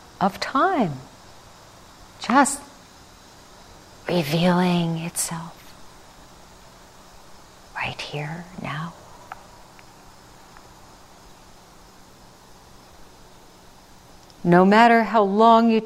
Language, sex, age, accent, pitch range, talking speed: English, female, 50-69, American, 155-230 Hz, 50 wpm